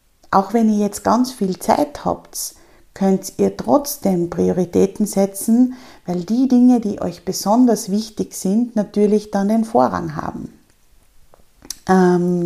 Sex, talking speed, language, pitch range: female, 125 wpm, German, 190-230 Hz